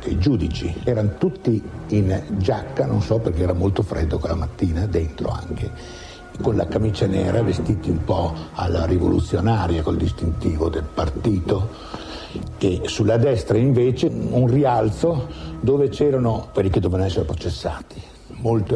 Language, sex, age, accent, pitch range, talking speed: Italian, male, 60-79, native, 85-115 Hz, 140 wpm